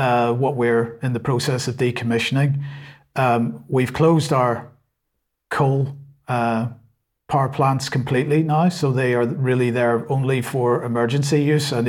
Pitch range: 125-150 Hz